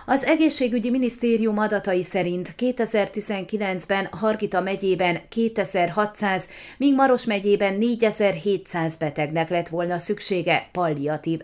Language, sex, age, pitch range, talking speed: Hungarian, female, 30-49, 175-225 Hz, 95 wpm